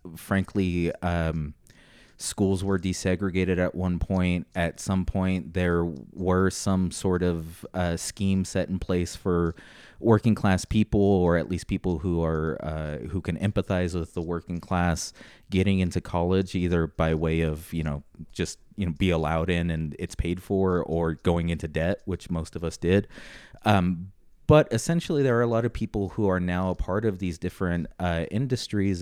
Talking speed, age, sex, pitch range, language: 180 wpm, 30-49, male, 85-105 Hz, English